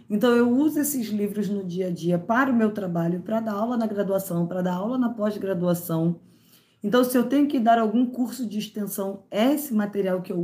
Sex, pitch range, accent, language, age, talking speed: female, 185-230 Hz, Brazilian, Portuguese, 20-39, 215 wpm